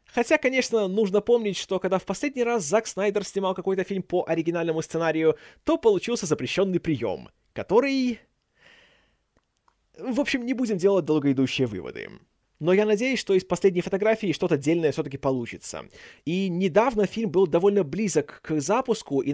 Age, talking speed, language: 20-39, 150 wpm, Russian